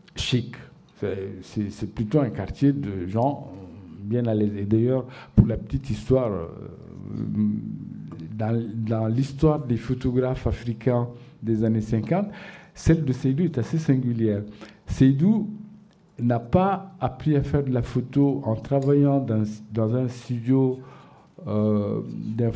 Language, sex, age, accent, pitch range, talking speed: French, male, 50-69, French, 115-155 Hz, 130 wpm